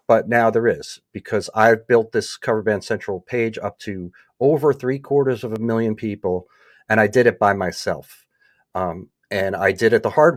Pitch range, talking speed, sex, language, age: 100-120 Hz, 190 wpm, male, English, 40-59